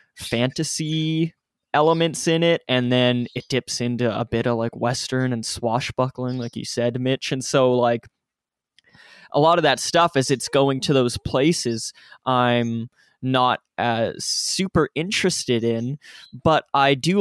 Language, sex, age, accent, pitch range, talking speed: English, male, 20-39, American, 120-135 Hz, 155 wpm